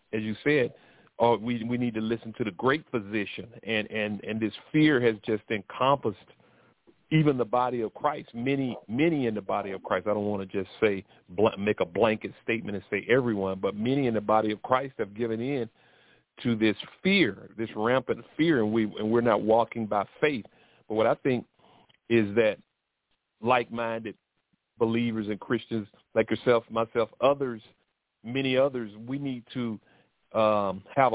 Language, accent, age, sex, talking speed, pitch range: English, American, 40-59, male, 175 wpm, 110-125 Hz